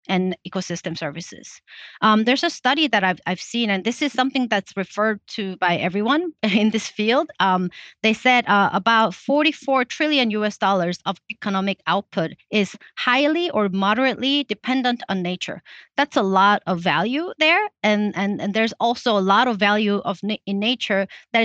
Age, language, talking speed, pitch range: 30-49, English, 175 wpm, 185-245 Hz